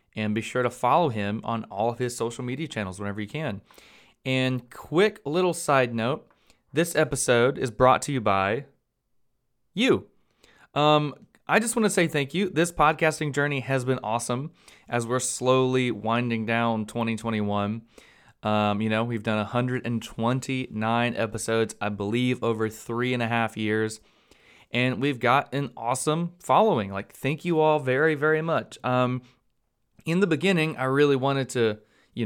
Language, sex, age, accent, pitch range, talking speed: English, male, 30-49, American, 110-145 Hz, 160 wpm